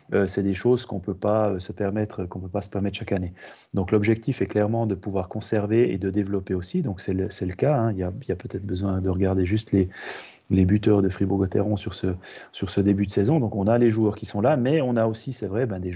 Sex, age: male, 30-49